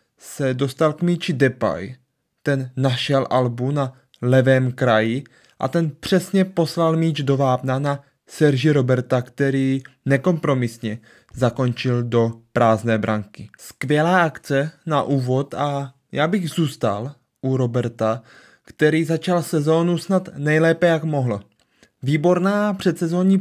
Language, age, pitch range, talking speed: Czech, 20-39, 125-165 Hz, 120 wpm